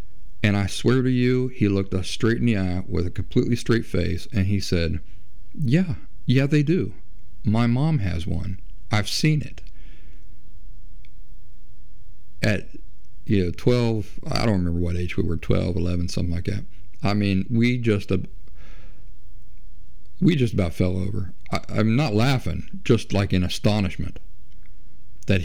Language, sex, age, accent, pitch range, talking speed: English, male, 50-69, American, 90-110 Hz, 150 wpm